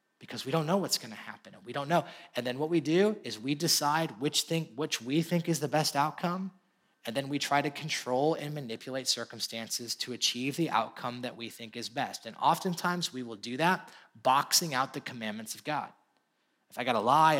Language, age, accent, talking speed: English, 30-49, American, 215 wpm